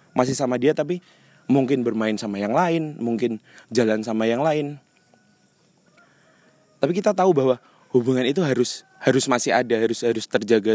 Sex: male